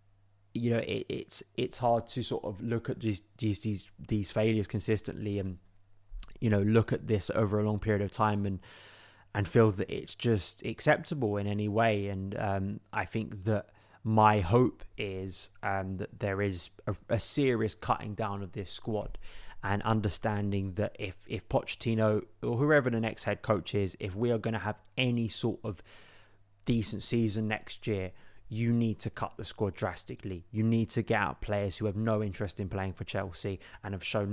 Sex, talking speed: male, 190 wpm